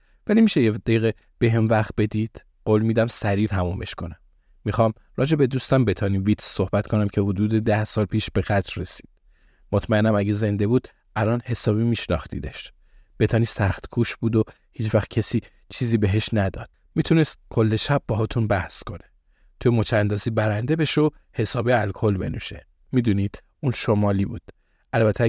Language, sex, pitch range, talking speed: Persian, male, 100-115 Hz, 155 wpm